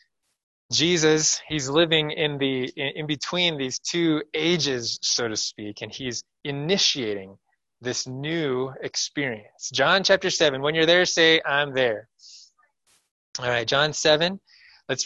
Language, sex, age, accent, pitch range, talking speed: English, male, 20-39, American, 120-175 Hz, 130 wpm